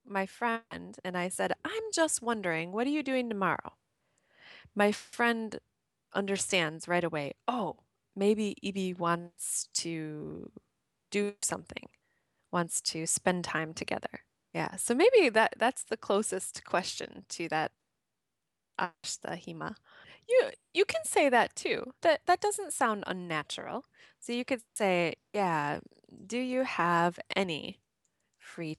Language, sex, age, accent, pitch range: Japanese, female, 20-39, American, 175-260 Hz